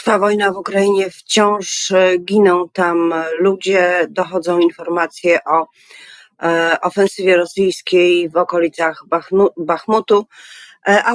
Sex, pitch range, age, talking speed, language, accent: female, 160-190 Hz, 40-59, 90 wpm, Polish, native